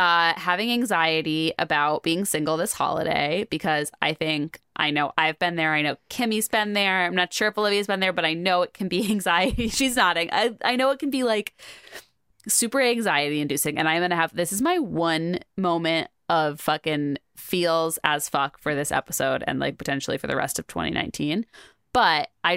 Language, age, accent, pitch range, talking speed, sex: English, 20-39, American, 150-180 Hz, 200 wpm, female